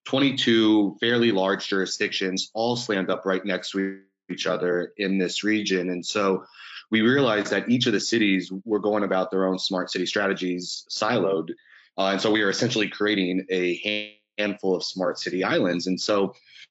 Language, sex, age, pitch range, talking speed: English, male, 30-49, 95-110 Hz, 170 wpm